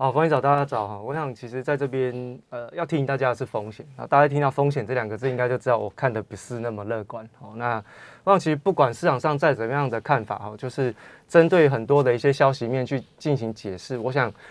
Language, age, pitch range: Chinese, 20-39, 115-150 Hz